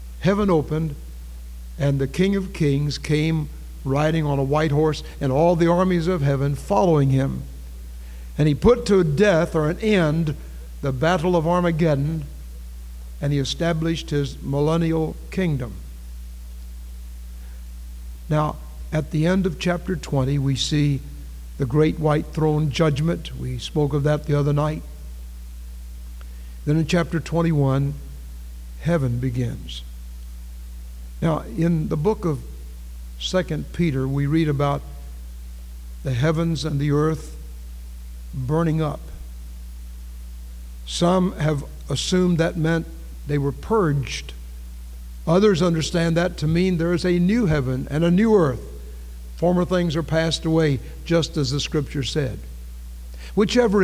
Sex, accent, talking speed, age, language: male, American, 130 wpm, 60-79, English